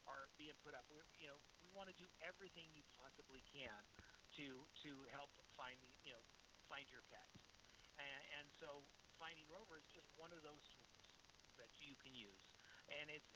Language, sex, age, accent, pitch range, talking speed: English, male, 50-69, American, 140-165 Hz, 190 wpm